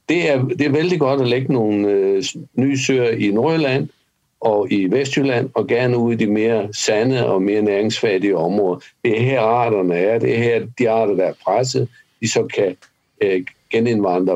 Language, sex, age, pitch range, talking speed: Danish, male, 60-79, 105-135 Hz, 190 wpm